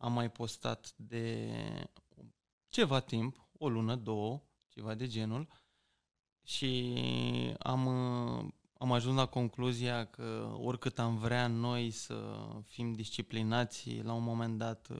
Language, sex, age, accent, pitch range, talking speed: Romanian, male, 20-39, native, 115-150 Hz, 120 wpm